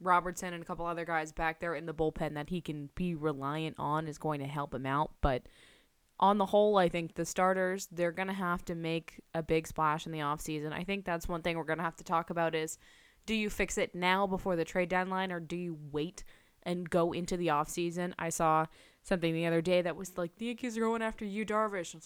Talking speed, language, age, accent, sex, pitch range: 250 wpm, English, 20-39, American, female, 170-205 Hz